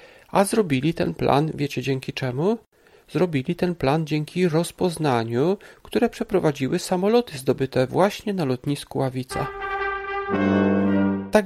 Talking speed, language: 110 wpm, Polish